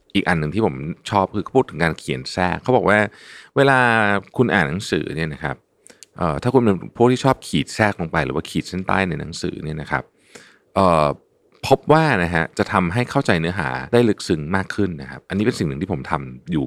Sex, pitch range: male, 75-110 Hz